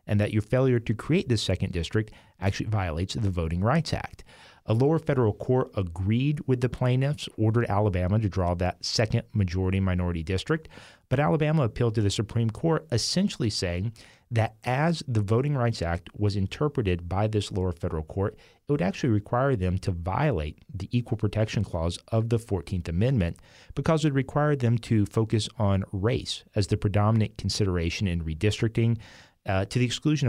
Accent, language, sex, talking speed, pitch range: American, English, male, 170 wpm, 95-120 Hz